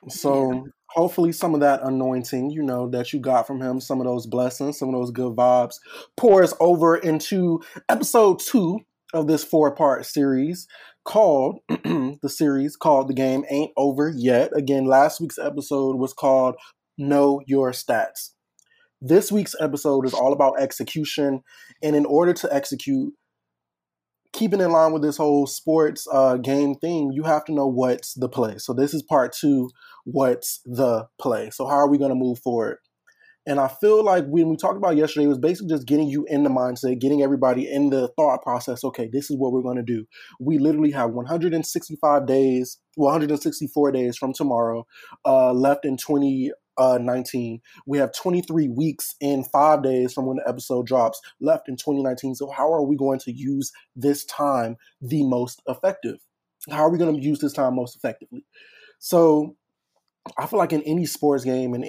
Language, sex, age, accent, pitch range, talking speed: English, male, 20-39, American, 130-155 Hz, 180 wpm